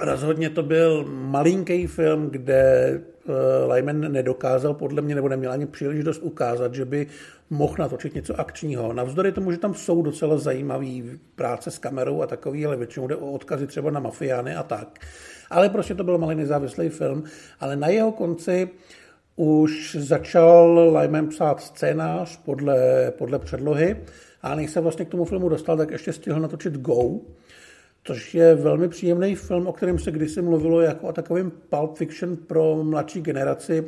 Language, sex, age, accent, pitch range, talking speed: Czech, male, 50-69, native, 140-170 Hz, 170 wpm